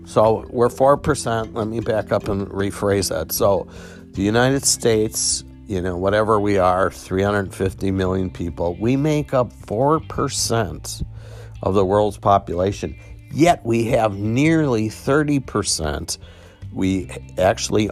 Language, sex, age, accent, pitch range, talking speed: English, male, 50-69, American, 90-120 Hz, 125 wpm